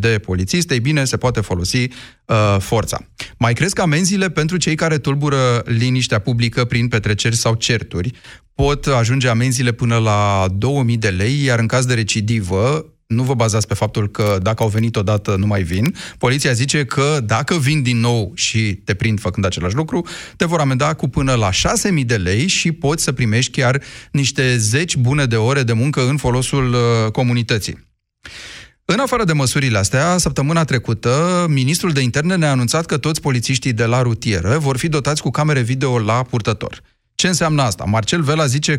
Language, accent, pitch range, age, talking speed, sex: Romanian, native, 115-150 Hz, 30-49, 180 wpm, male